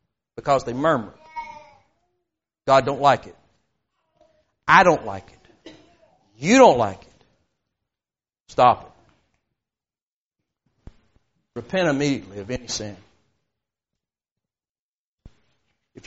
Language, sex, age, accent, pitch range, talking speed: English, male, 60-79, American, 125-185 Hz, 85 wpm